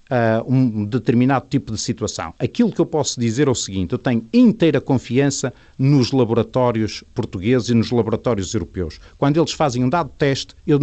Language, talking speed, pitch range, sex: Portuguese, 170 wpm, 115-155 Hz, male